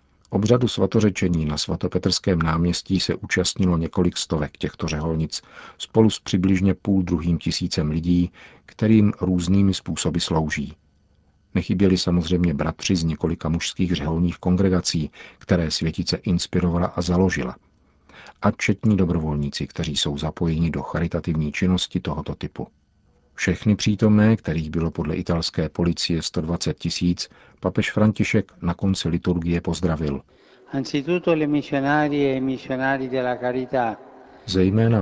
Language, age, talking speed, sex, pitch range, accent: Czech, 50-69, 105 wpm, male, 85-100 Hz, native